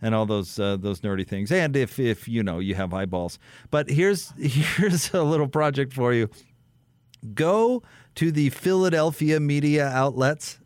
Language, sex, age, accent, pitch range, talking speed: English, male, 40-59, American, 105-155 Hz, 165 wpm